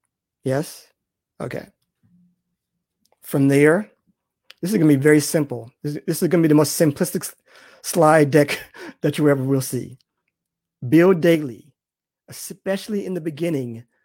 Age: 30-49